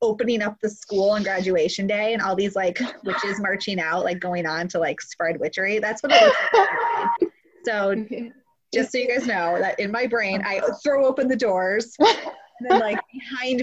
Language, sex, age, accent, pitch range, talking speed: English, female, 20-39, American, 185-255 Hz, 195 wpm